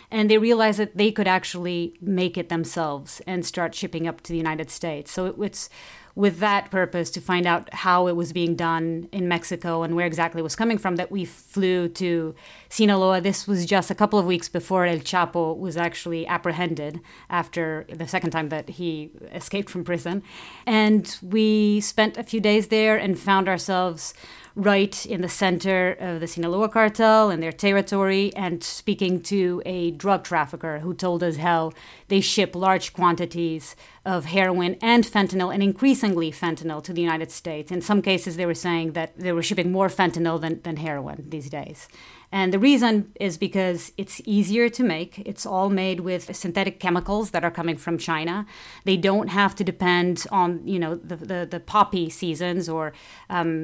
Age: 30-49